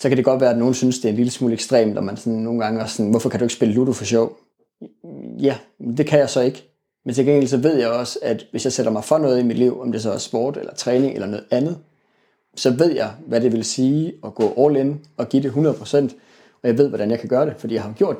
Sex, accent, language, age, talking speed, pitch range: male, native, Danish, 30-49, 295 wpm, 115-135 Hz